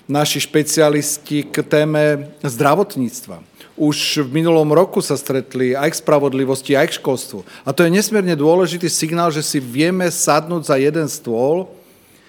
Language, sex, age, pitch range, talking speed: Slovak, male, 40-59, 130-155 Hz, 145 wpm